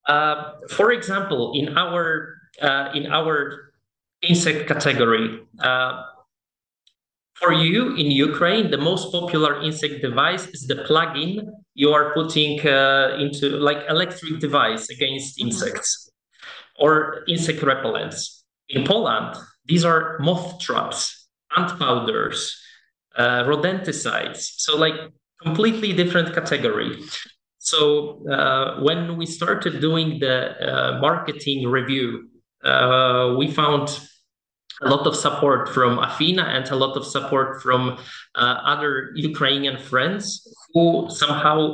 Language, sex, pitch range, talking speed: Ukrainian, male, 140-170 Hz, 120 wpm